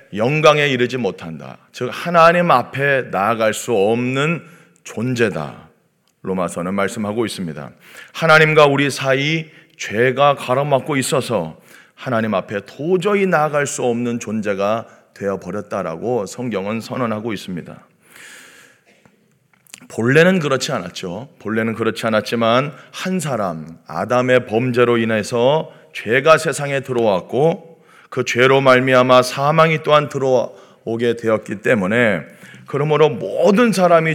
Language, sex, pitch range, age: Korean, male, 110-140 Hz, 40-59